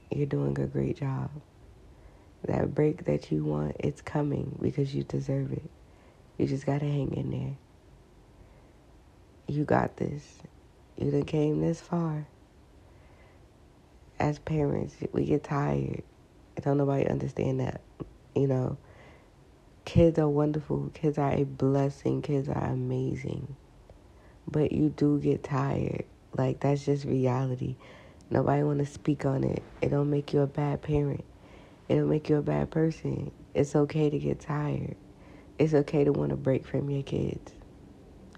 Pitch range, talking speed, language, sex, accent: 100-145 Hz, 150 wpm, English, female, American